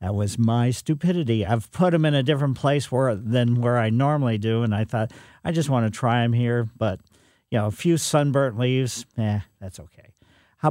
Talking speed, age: 205 wpm, 50-69